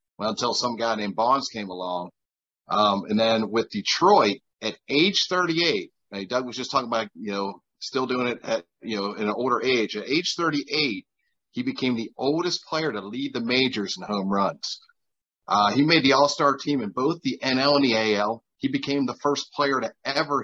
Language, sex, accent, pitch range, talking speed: English, male, American, 110-150 Hz, 195 wpm